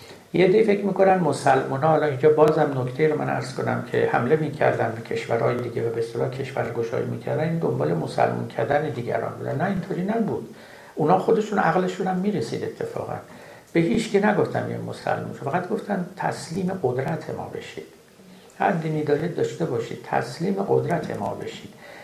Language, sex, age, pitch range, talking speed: Persian, male, 60-79, 145-185 Hz, 170 wpm